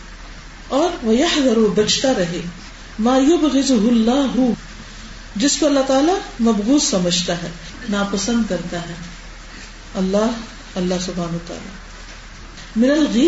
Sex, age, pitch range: female, 50-69, 200-270 Hz